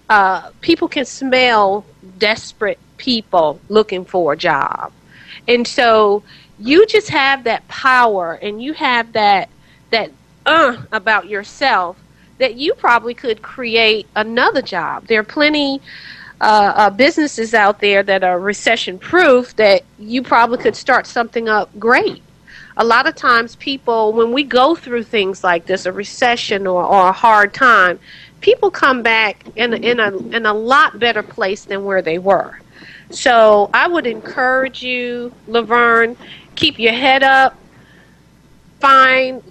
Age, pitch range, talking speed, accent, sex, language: 40-59, 205-260 Hz, 145 wpm, American, female, English